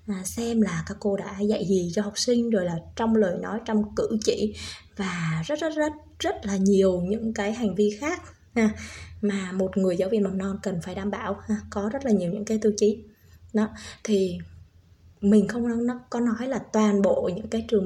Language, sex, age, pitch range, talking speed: Vietnamese, female, 20-39, 185-220 Hz, 215 wpm